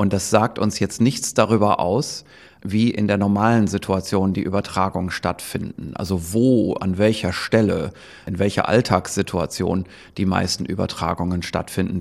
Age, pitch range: 30-49, 100-115 Hz